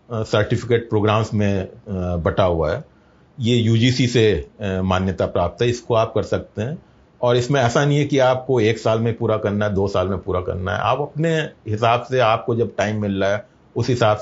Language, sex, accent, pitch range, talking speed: Hindi, male, native, 100-135 Hz, 205 wpm